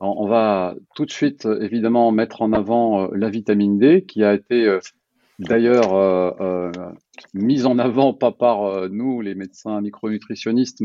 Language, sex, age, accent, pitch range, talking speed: French, male, 40-59, French, 100-125 Hz, 155 wpm